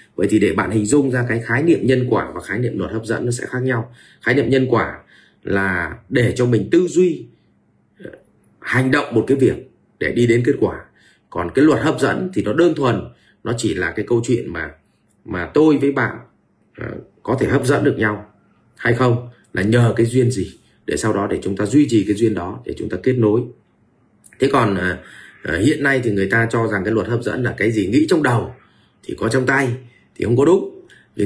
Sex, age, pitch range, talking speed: male, 30-49, 105-135 Hz, 230 wpm